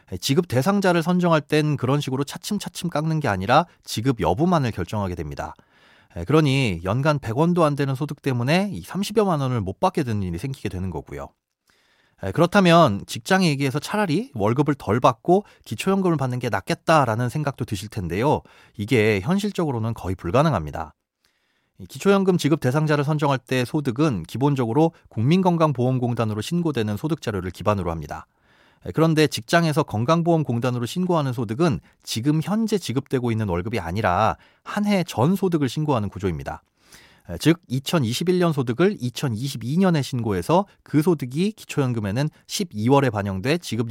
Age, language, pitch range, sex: 30-49, Korean, 110-165 Hz, male